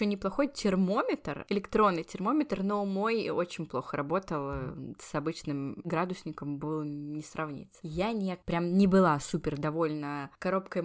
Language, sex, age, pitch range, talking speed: Russian, female, 20-39, 155-200 Hz, 125 wpm